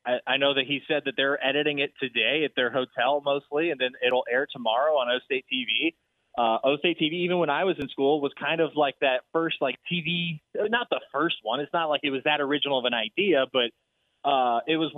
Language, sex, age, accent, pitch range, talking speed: English, male, 20-39, American, 130-160 Hz, 235 wpm